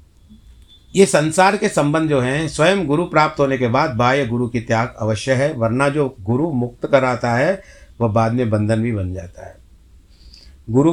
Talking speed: 180 wpm